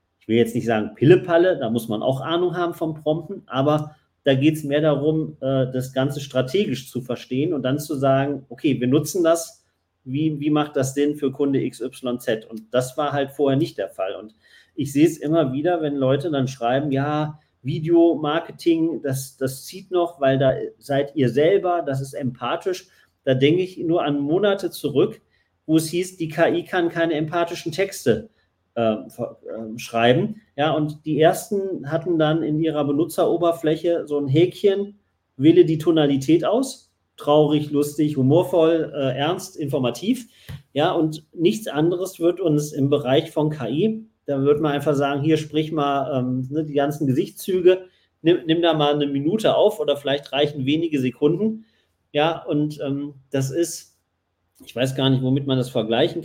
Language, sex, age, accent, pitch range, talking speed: German, male, 40-59, German, 135-165 Hz, 175 wpm